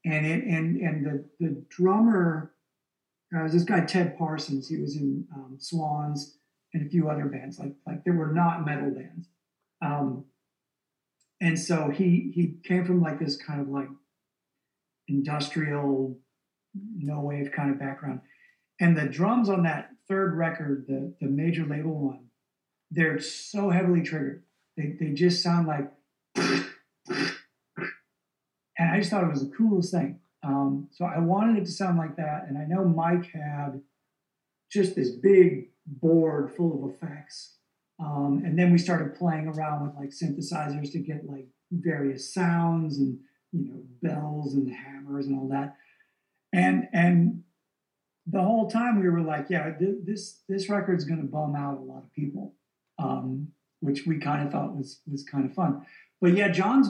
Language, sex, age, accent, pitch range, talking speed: English, male, 50-69, American, 140-175 Hz, 165 wpm